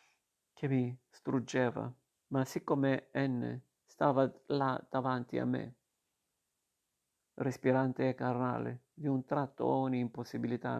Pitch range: 125-135 Hz